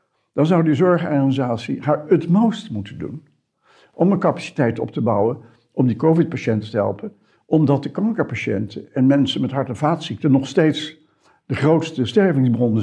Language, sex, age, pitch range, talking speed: Dutch, male, 60-79, 125-165 Hz, 155 wpm